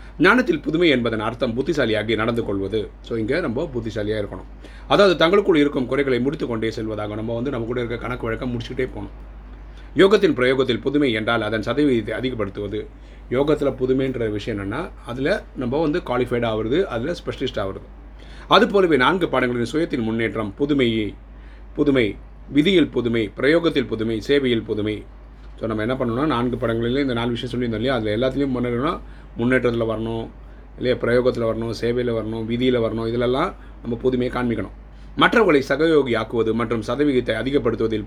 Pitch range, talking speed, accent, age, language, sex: 110-130 Hz, 150 wpm, native, 30-49, Tamil, male